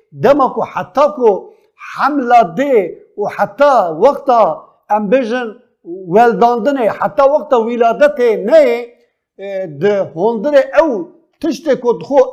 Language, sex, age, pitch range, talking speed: Turkish, male, 50-69, 225-295 Hz, 95 wpm